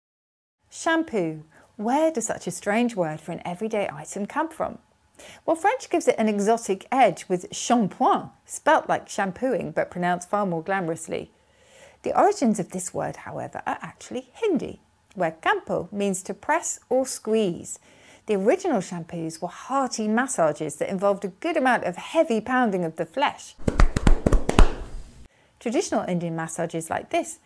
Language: English